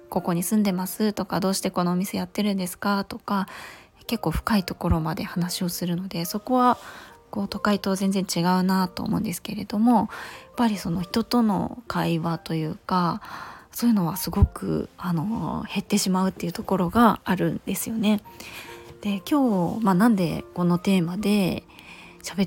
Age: 20-39